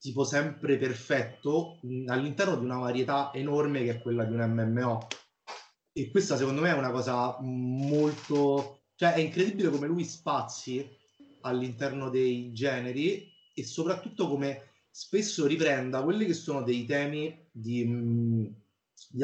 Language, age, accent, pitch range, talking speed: Italian, 30-49, native, 125-155 Hz, 135 wpm